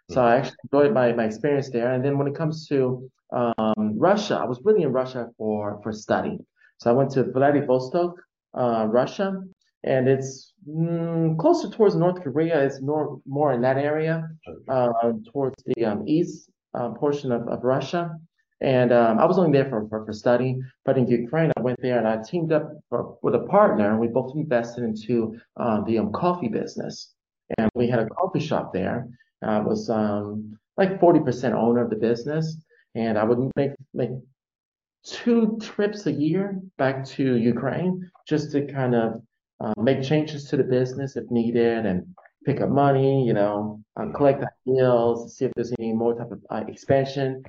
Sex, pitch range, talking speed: male, 120-150 Hz, 185 wpm